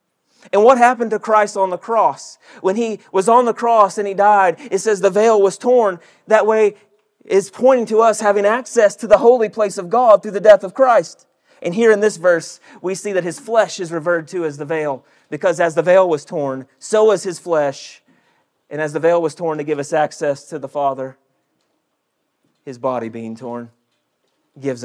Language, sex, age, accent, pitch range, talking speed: English, male, 30-49, American, 170-225 Hz, 210 wpm